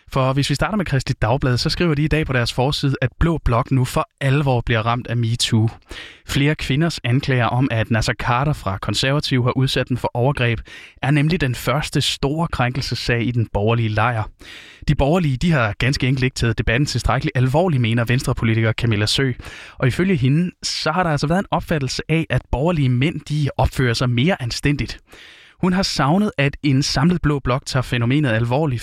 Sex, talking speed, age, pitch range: male, 195 wpm, 20-39, 120-150 Hz